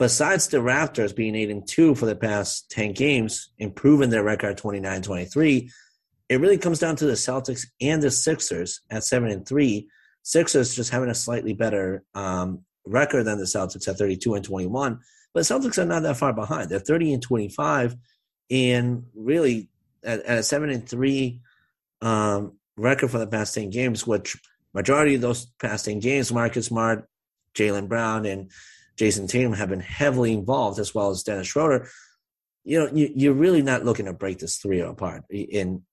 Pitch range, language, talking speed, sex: 105-130 Hz, English, 170 wpm, male